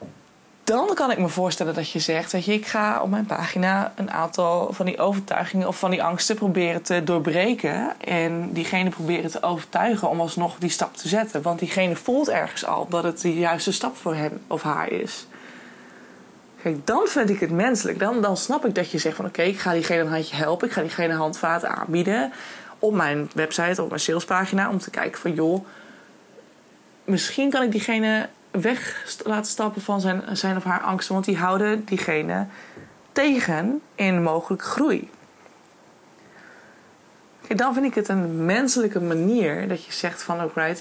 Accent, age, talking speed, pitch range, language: Dutch, 20-39, 180 wpm, 170-215 Hz, Dutch